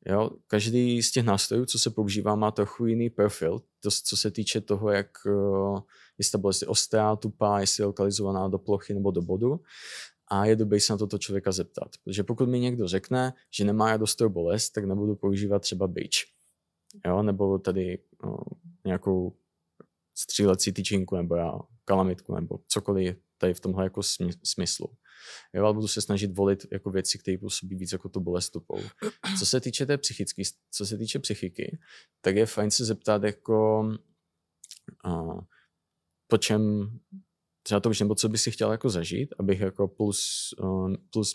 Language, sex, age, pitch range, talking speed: Czech, male, 20-39, 95-110 Hz, 165 wpm